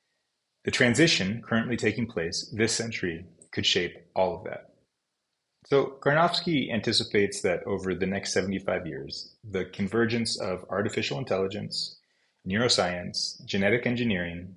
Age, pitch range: 30-49, 95-135 Hz